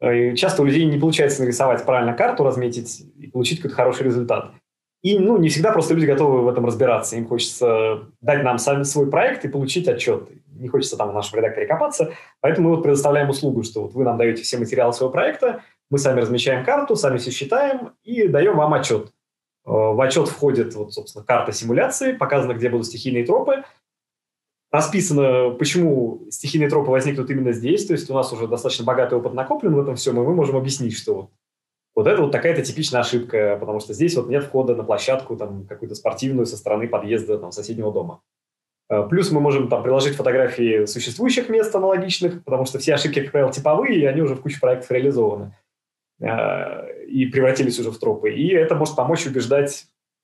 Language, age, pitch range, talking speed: Russian, 20-39, 120-165 Hz, 190 wpm